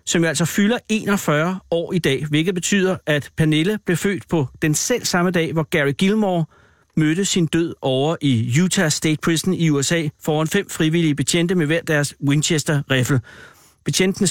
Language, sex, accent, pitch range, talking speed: Danish, male, native, 135-170 Hz, 170 wpm